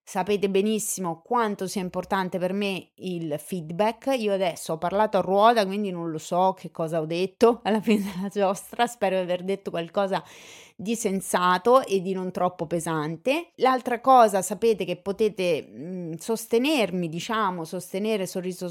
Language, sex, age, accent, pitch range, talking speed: Italian, female, 30-49, native, 165-220 Hz, 160 wpm